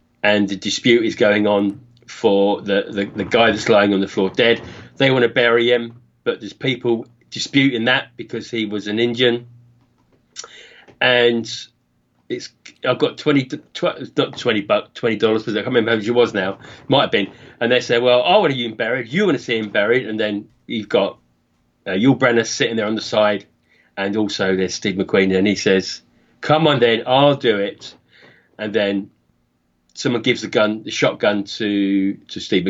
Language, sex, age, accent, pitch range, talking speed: English, male, 30-49, British, 100-125 Hz, 195 wpm